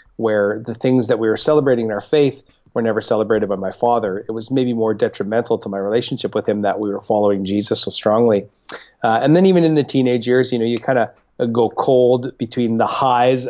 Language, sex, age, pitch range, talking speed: English, male, 30-49, 110-130 Hz, 225 wpm